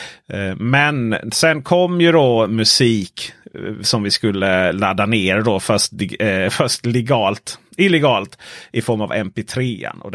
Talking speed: 130 wpm